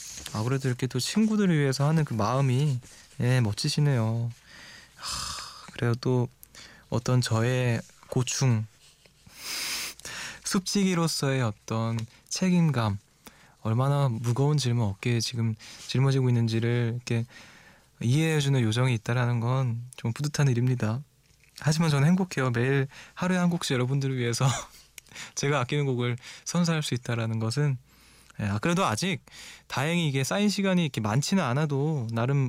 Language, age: Korean, 20-39